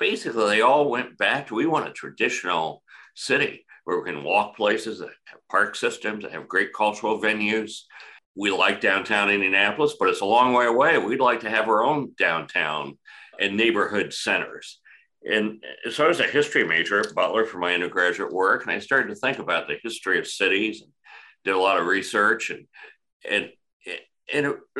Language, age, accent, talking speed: English, 60-79, American, 190 wpm